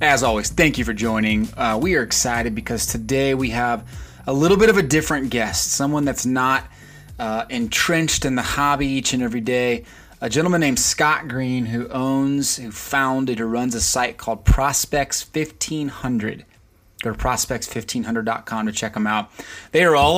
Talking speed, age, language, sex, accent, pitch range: 170 wpm, 30-49, English, male, American, 115-145 Hz